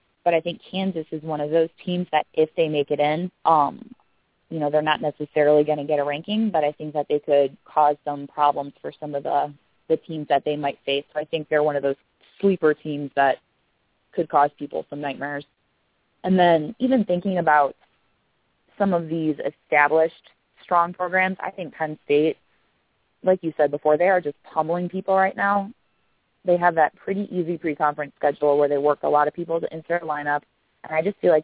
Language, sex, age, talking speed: English, female, 20-39, 205 wpm